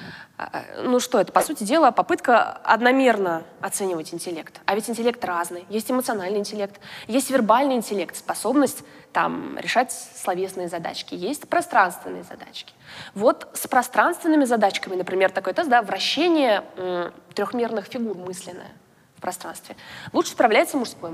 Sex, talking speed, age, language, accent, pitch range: female, 130 wpm, 20-39, Russian, native, 195-270 Hz